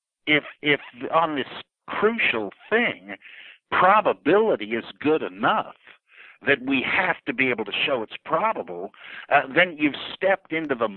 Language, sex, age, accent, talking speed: English, male, 50-69, American, 140 wpm